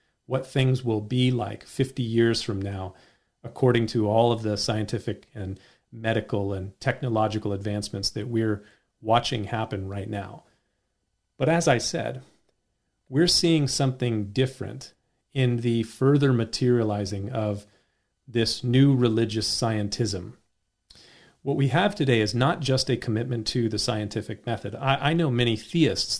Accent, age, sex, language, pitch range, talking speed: American, 40-59, male, English, 105-130 Hz, 140 wpm